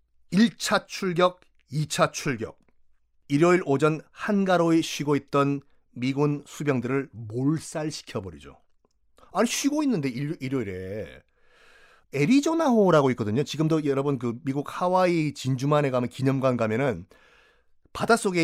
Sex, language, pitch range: male, Korean, 125-175 Hz